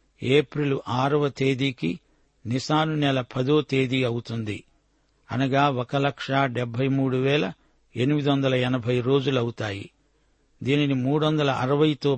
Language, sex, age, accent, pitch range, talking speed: Telugu, male, 60-79, native, 125-145 Hz, 110 wpm